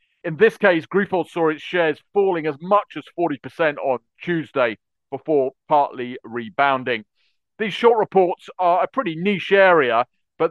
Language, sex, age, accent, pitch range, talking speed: English, male, 40-59, British, 145-180 Hz, 150 wpm